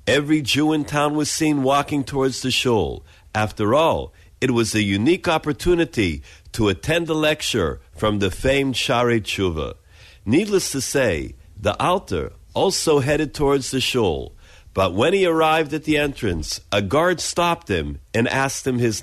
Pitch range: 105-155 Hz